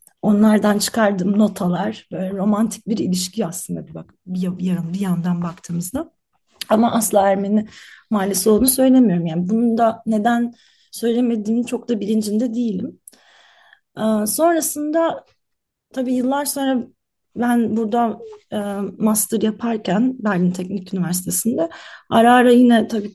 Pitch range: 200-245 Hz